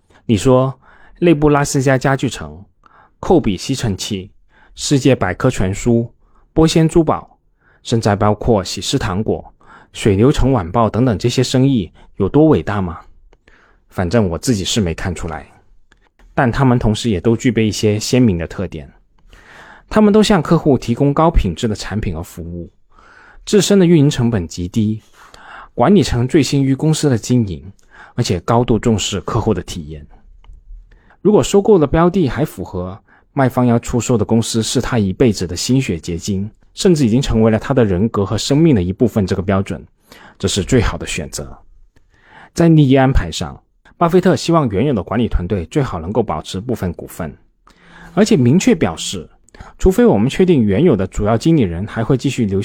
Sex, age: male, 20-39